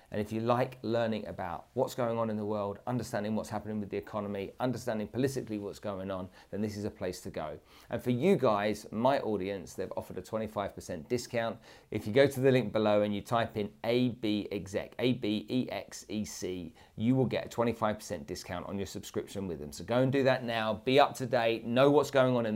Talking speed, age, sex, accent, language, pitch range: 215 wpm, 40-59, male, British, English, 105-125 Hz